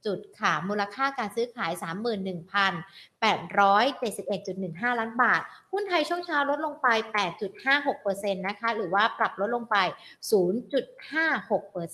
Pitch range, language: 195-255 Hz, Thai